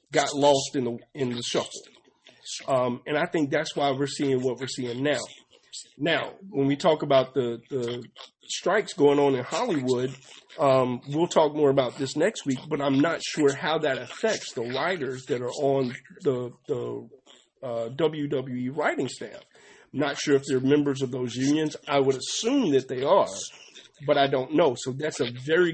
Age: 40-59